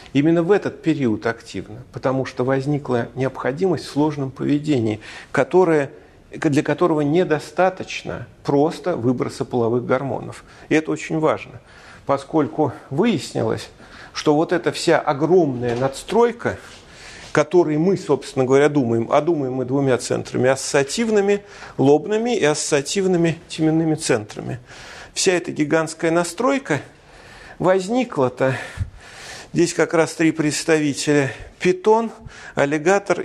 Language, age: Russian, 40-59